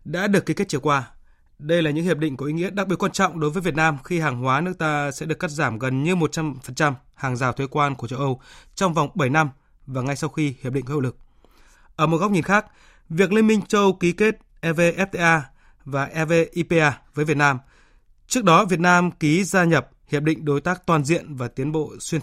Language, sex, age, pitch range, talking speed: Vietnamese, male, 20-39, 135-170 Hz, 240 wpm